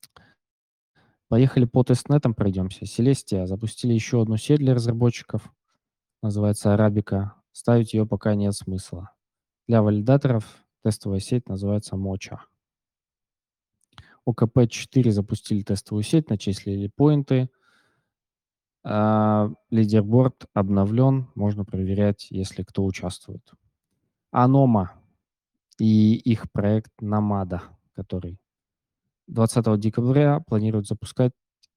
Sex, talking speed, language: male, 90 wpm, Russian